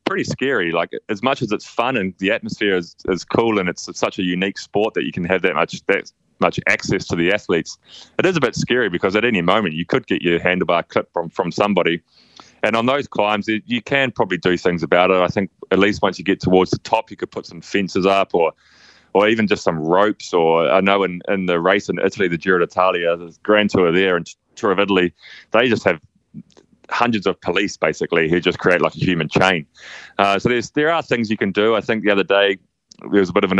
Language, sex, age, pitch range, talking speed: English, male, 20-39, 90-105 Hz, 245 wpm